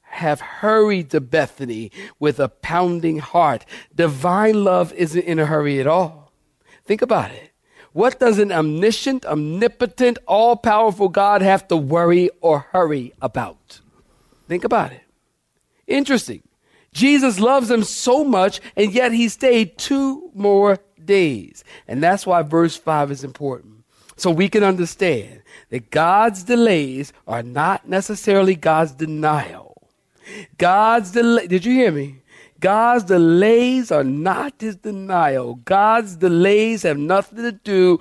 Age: 50-69